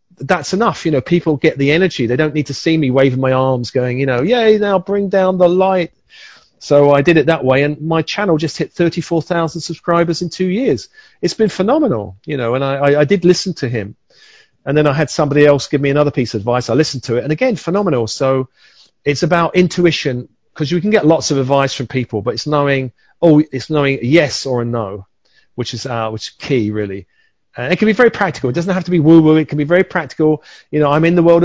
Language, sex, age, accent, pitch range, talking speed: English, male, 40-59, British, 135-165 Hz, 240 wpm